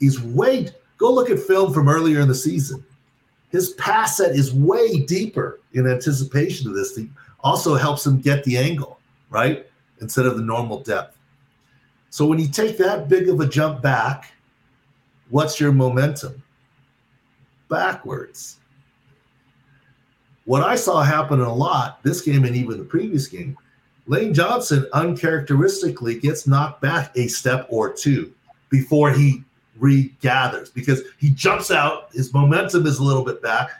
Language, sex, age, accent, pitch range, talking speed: English, male, 50-69, American, 130-150 Hz, 155 wpm